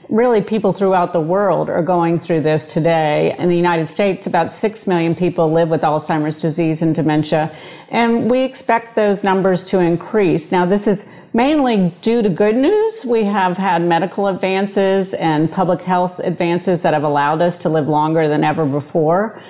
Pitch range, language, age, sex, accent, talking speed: 165-200 Hz, English, 50-69, female, American, 180 wpm